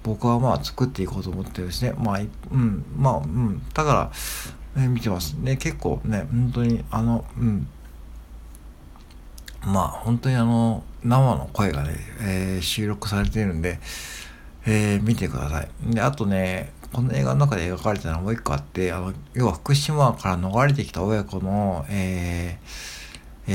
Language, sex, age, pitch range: Japanese, male, 60-79, 90-120 Hz